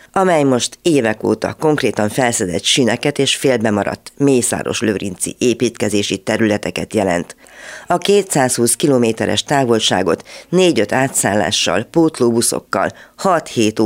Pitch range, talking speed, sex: 105-140 Hz, 90 wpm, female